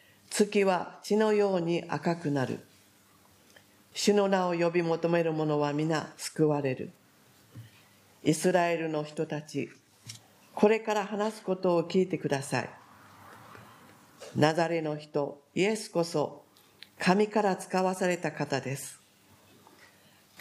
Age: 50-69